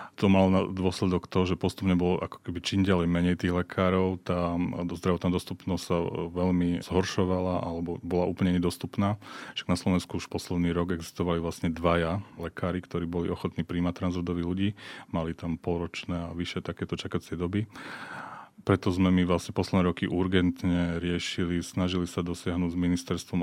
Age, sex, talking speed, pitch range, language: 30-49, male, 155 wpm, 85-95 Hz, Slovak